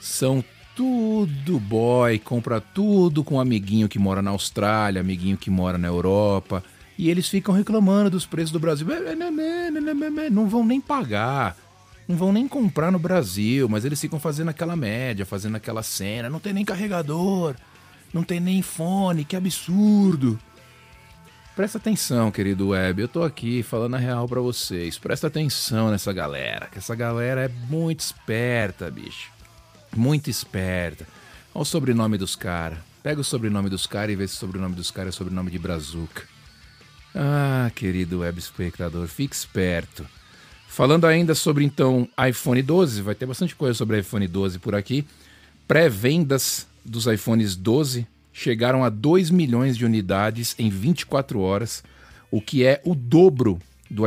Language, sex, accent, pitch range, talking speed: Portuguese, male, Brazilian, 100-160 Hz, 155 wpm